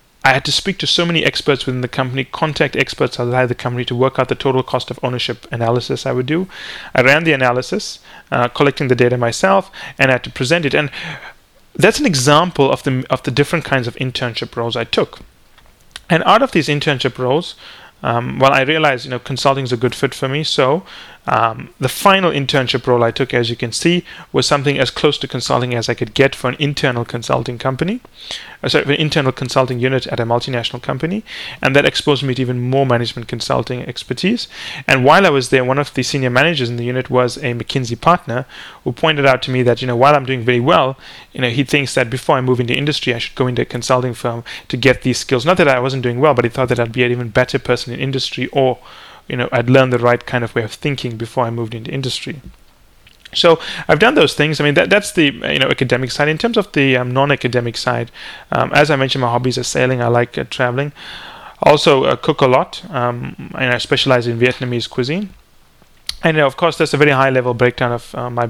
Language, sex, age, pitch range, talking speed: English, male, 30-49, 125-145 Hz, 235 wpm